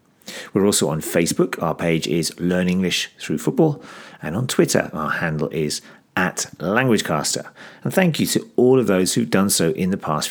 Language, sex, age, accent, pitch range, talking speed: English, male, 40-59, British, 85-110 Hz, 185 wpm